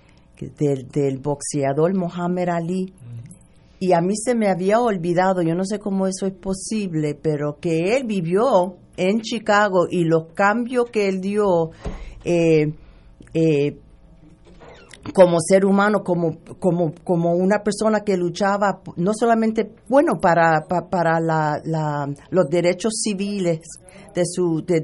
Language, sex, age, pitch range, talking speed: Spanish, female, 50-69, 160-195 Hz, 140 wpm